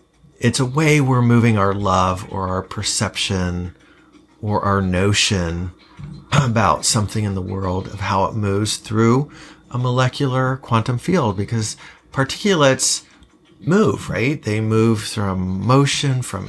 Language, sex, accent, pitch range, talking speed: English, male, American, 100-125 Hz, 130 wpm